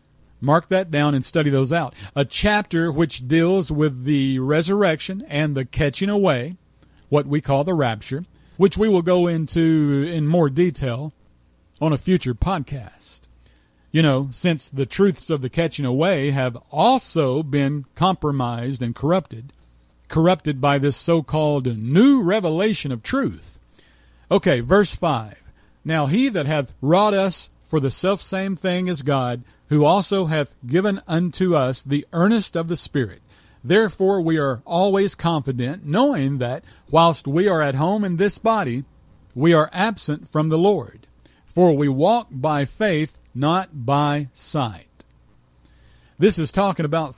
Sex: male